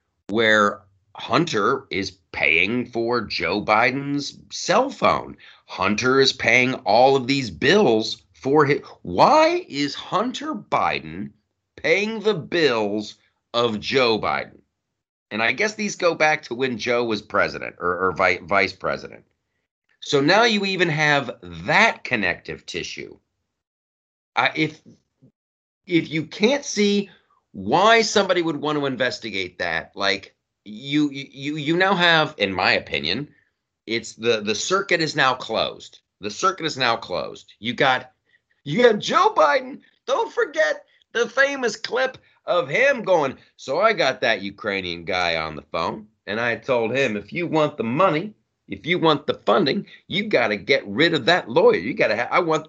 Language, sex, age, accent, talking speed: English, male, 40-59, American, 155 wpm